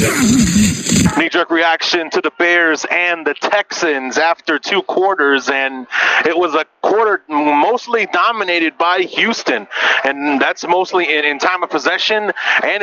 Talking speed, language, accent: 135 wpm, English, American